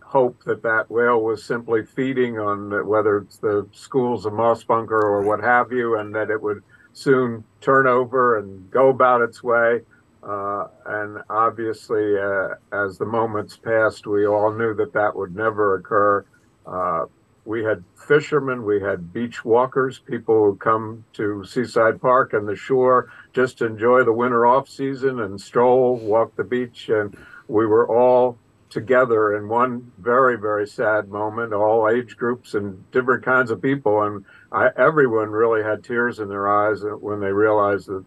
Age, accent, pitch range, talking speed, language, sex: 50-69, American, 105-125 Hz, 170 wpm, English, male